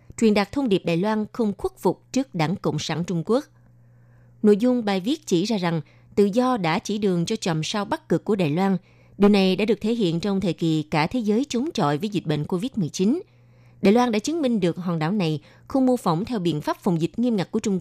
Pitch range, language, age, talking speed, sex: 160-225 Hz, Vietnamese, 20-39, 250 wpm, female